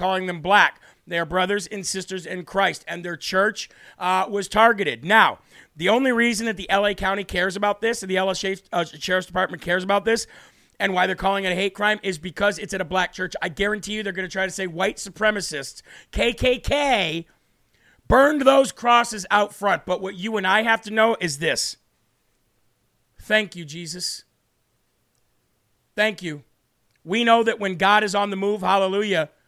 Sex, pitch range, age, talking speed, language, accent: male, 185-220 Hz, 40-59, 190 wpm, English, American